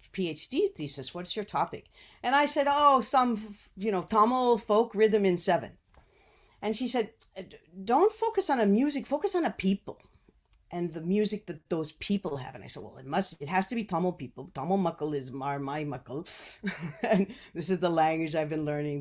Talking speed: 190 wpm